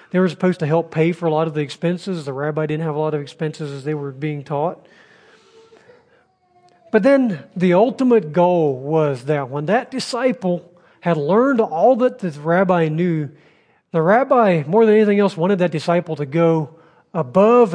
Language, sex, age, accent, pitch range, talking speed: English, male, 40-59, American, 155-205 Hz, 185 wpm